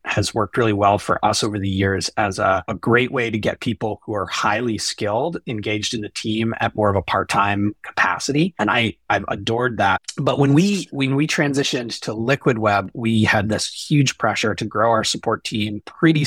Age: 30-49